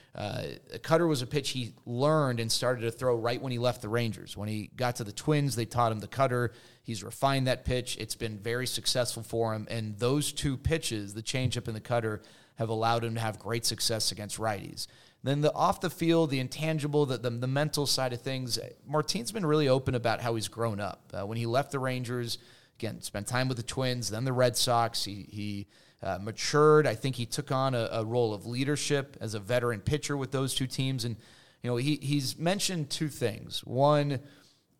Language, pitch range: English, 115-135 Hz